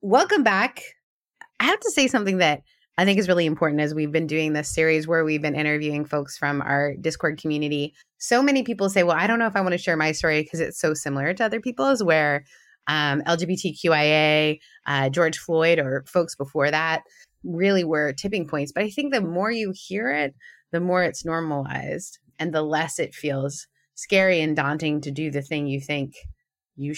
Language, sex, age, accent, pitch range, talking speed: English, female, 20-39, American, 145-195 Hz, 200 wpm